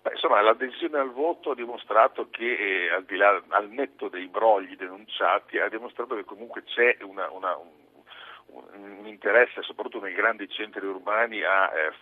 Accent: native